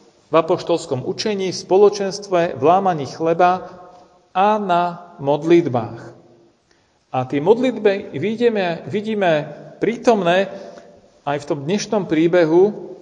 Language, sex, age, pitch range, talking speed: Slovak, male, 40-59, 155-195 Hz, 90 wpm